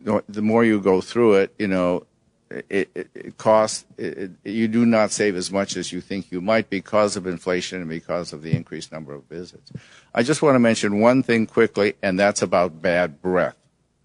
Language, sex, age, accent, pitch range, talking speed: English, male, 50-69, American, 95-130 Hz, 195 wpm